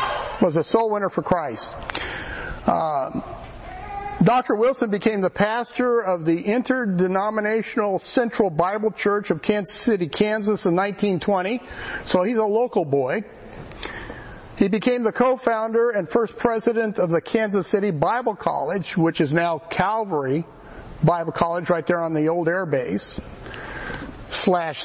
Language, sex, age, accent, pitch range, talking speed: English, male, 50-69, American, 170-225 Hz, 135 wpm